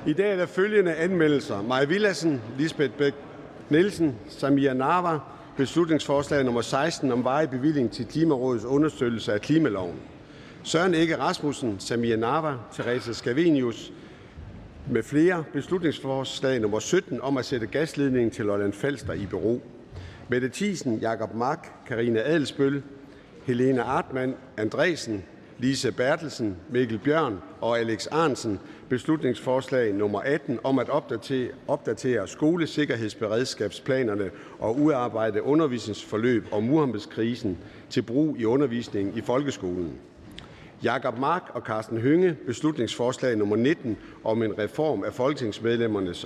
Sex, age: male, 60-79